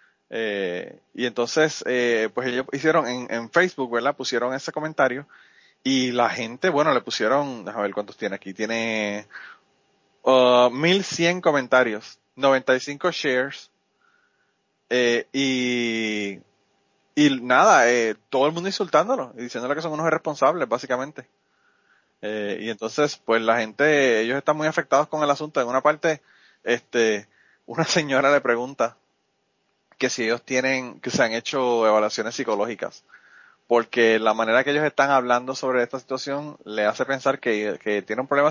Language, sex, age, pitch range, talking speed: Spanish, male, 20-39, 115-150 Hz, 150 wpm